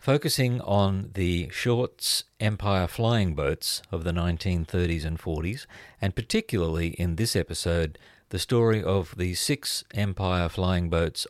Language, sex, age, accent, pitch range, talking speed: English, male, 50-69, Australian, 85-110 Hz, 135 wpm